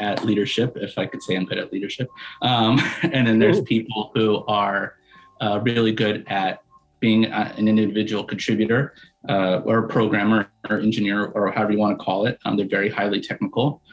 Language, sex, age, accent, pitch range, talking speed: English, male, 30-49, American, 105-125 Hz, 175 wpm